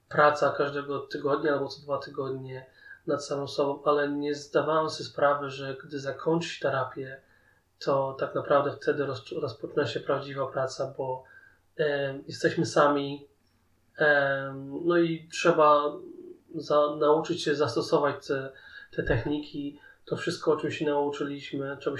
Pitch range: 135-155 Hz